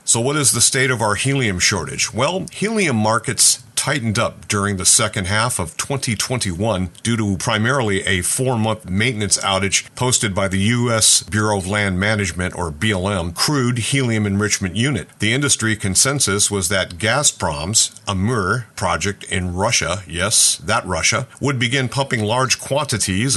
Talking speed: 150 wpm